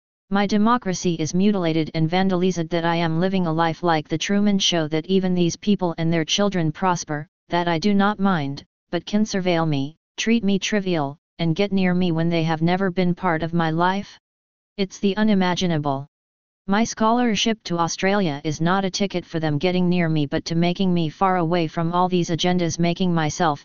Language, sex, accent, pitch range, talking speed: English, female, American, 165-195 Hz, 195 wpm